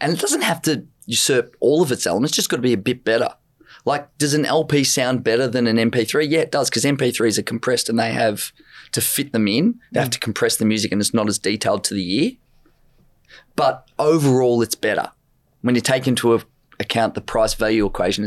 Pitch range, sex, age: 110-140 Hz, male, 20-39